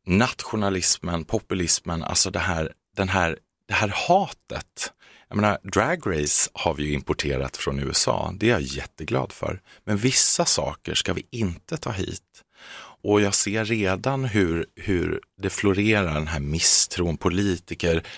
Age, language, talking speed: 30-49, Swedish, 145 wpm